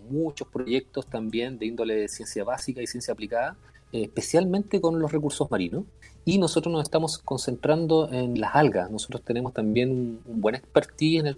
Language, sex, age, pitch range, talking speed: Spanish, male, 30-49, 110-145 Hz, 170 wpm